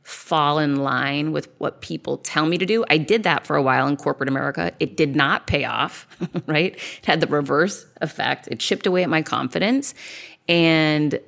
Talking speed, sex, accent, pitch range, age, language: 195 wpm, female, American, 140-195 Hz, 30-49, English